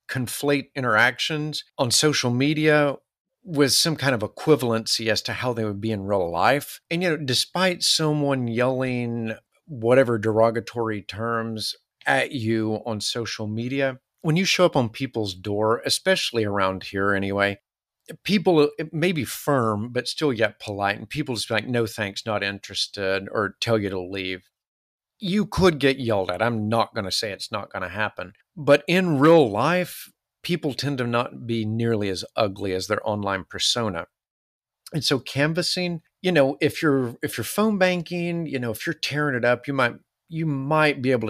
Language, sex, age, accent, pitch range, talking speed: English, male, 50-69, American, 110-150 Hz, 175 wpm